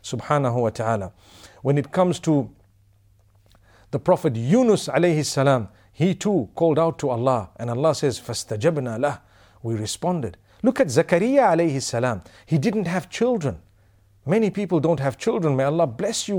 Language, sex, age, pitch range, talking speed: English, male, 50-69, 120-185 Hz, 155 wpm